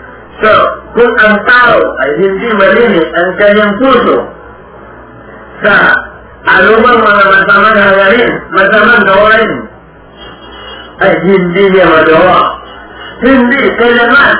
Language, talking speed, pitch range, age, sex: Filipino, 95 wpm, 180-240 Hz, 50-69, male